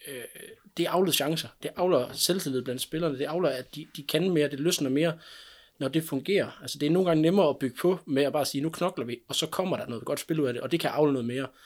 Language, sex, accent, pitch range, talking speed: Danish, male, native, 125-160 Hz, 275 wpm